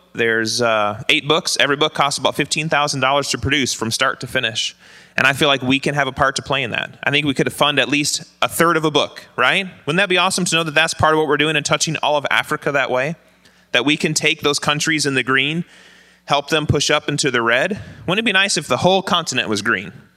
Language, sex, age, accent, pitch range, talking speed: English, male, 20-39, American, 140-175 Hz, 260 wpm